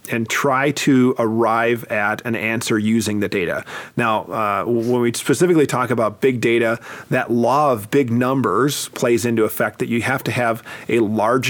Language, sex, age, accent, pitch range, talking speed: English, male, 40-59, American, 115-135 Hz, 180 wpm